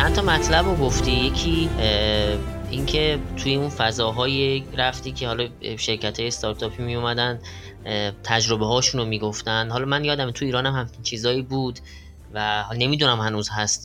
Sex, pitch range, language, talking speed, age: female, 115-145 Hz, Persian, 150 wpm, 20-39